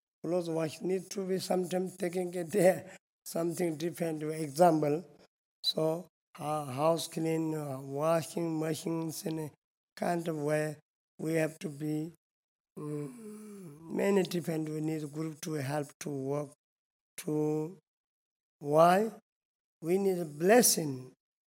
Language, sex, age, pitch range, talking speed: Italian, male, 50-69, 150-175 Hz, 125 wpm